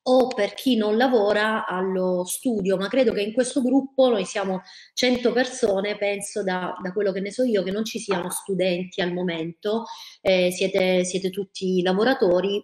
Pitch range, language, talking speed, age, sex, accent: 180-220 Hz, Italian, 175 wpm, 30-49, female, native